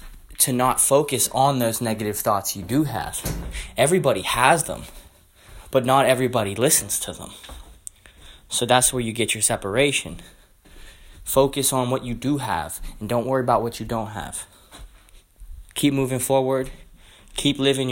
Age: 20-39